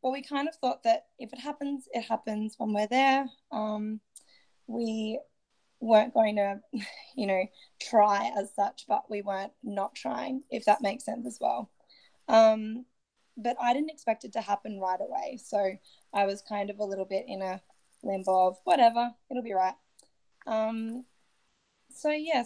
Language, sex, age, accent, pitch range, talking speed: English, female, 10-29, Australian, 205-255 Hz, 170 wpm